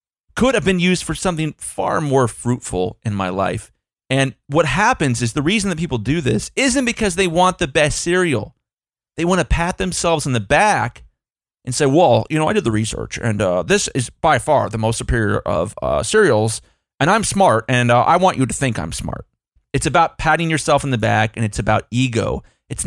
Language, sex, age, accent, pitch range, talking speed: English, male, 30-49, American, 105-150 Hz, 215 wpm